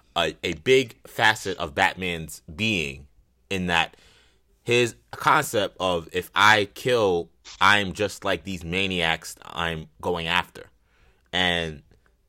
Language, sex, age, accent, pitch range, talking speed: English, male, 20-39, American, 80-100 Hz, 115 wpm